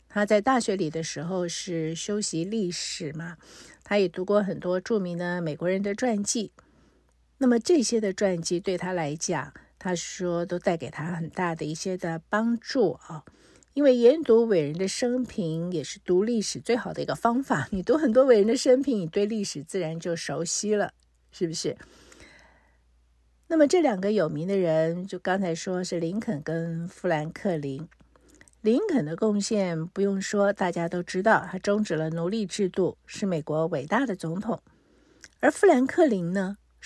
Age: 50-69